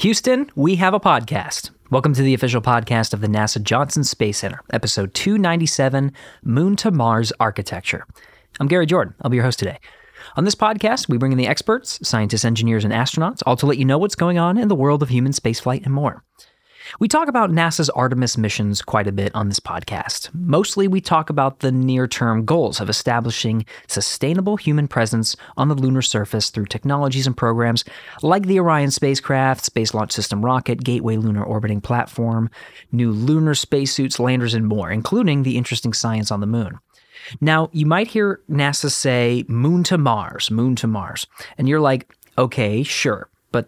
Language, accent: English, American